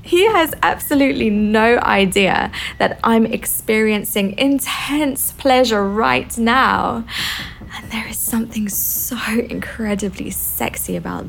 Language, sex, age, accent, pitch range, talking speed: English, female, 20-39, British, 200-275 Hz, 105 wpm